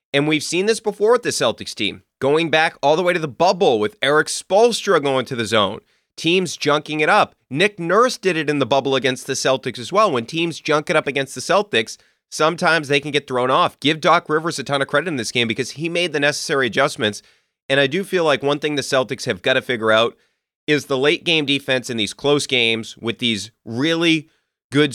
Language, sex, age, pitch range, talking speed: English, male, 30-49, 125-180 Hz, 235 wpm